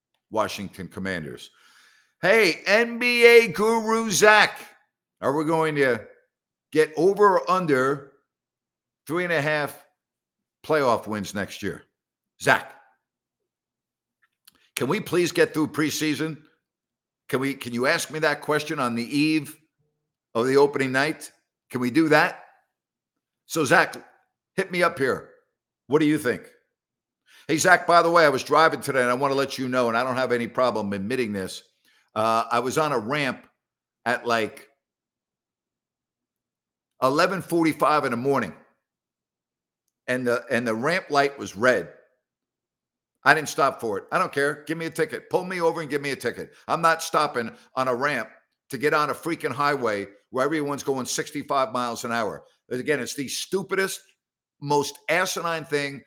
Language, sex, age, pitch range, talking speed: English, male, 60-79, 125-160 Hz, 155 wpm